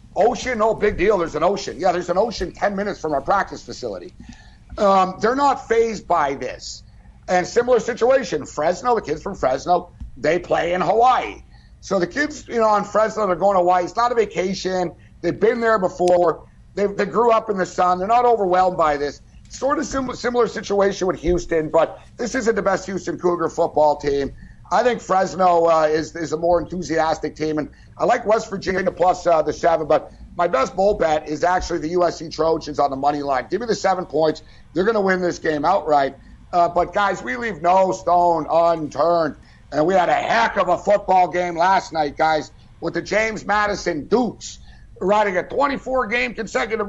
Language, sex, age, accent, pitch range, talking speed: English, male, 60-79, American, 165-220 Hz, 200 wpm